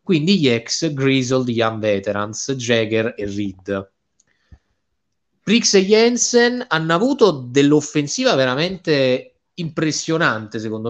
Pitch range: 120-175 Hz